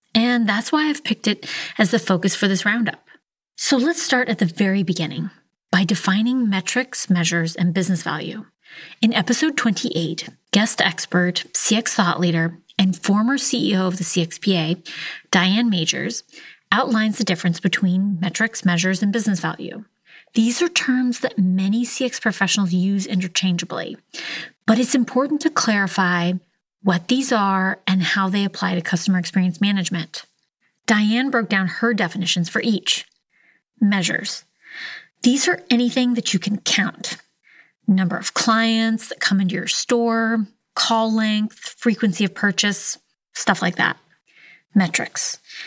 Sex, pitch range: female, 185-235 Hz